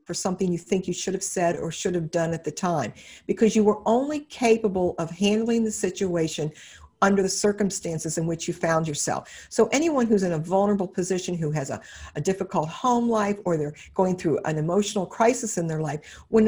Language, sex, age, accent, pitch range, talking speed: Tamil, female, 50-69, American, 165-215 Hz, 210 wpm